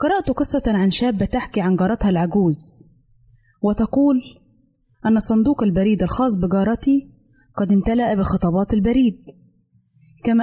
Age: 20-39